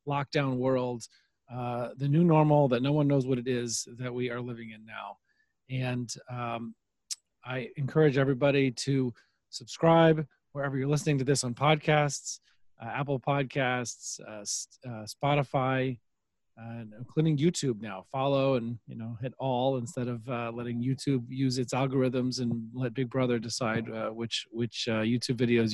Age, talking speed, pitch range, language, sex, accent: 40-59, 160 wpm, 120-150 Hz, English, male, American